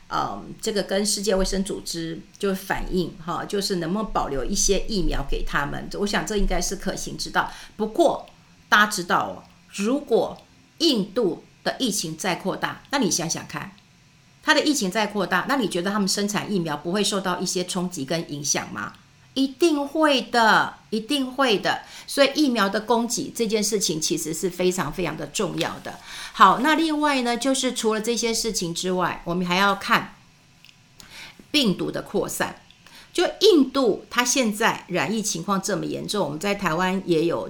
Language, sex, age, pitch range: Chinese, female, 50-69, 175-220 Hz